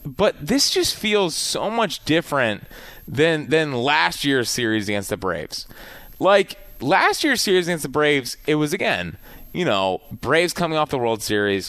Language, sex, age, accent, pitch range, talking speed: English, male, 20-39, American, 110-155 Hz, 170 wpm